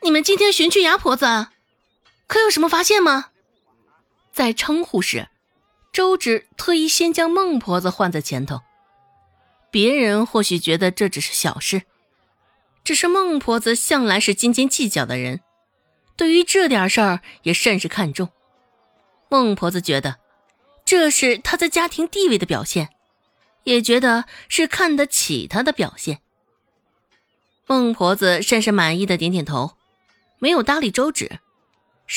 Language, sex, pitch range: Chinese, female, 180-285 Hz